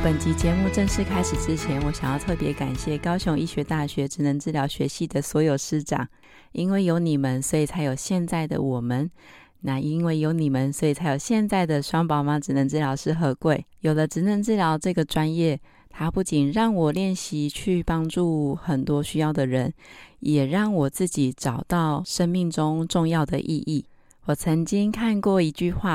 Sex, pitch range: female, 145-185 Hz